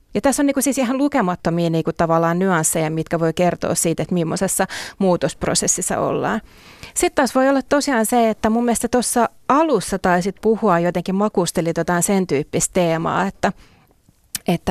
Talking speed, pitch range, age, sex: 165 wpm, 170-210 Hz, 30-49, female